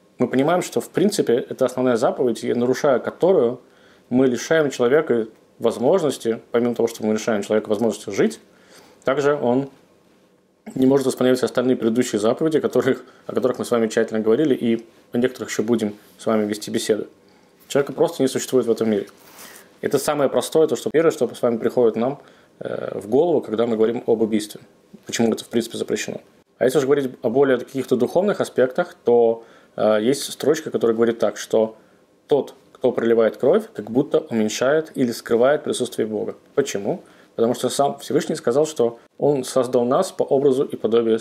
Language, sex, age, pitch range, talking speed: Russian, male, 20-39, 115-135 Hz, 175 wpm